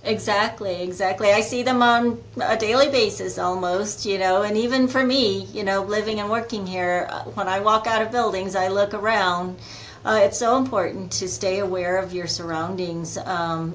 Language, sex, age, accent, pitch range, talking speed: English, female, 40-59, American, 160-195 Hz, 185 wpm